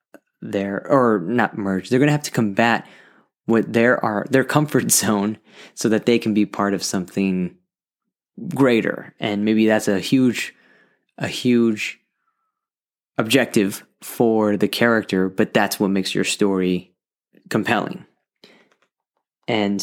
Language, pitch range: English, 100-120 Hz